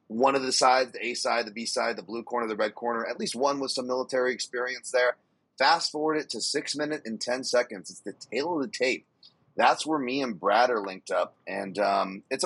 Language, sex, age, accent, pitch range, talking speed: English, male, 30-49, American, 110-130 Hz, 240 wpm